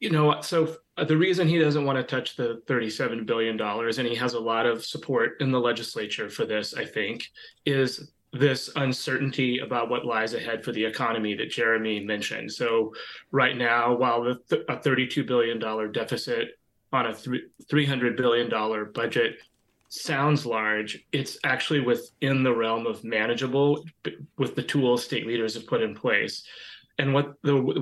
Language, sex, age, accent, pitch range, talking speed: English, male, 30-49, American, 115-140 Hz, 160 wpm